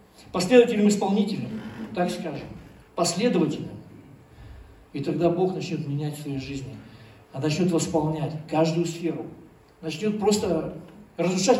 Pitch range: 140-185 Hz